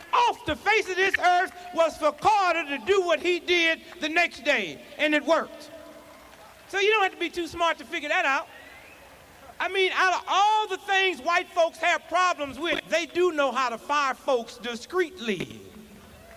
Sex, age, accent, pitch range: male, 40-59, American, 275-350 Hz